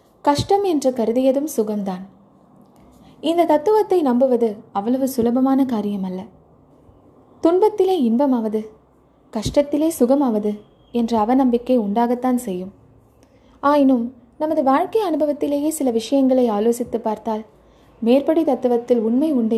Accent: native